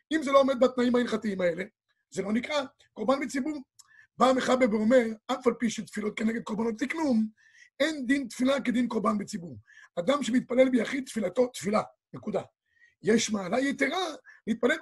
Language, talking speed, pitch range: Hebrew, 160 wpm, 215-265 Hz